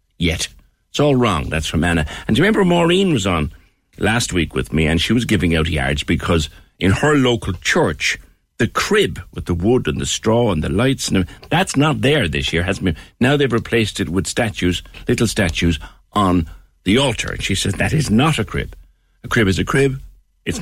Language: English